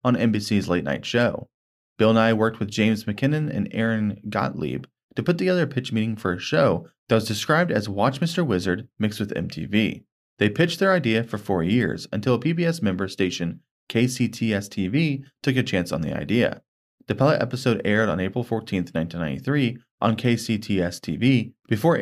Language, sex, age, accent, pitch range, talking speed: English, male, 20-39, American, 100-135 Hz, 170 wpm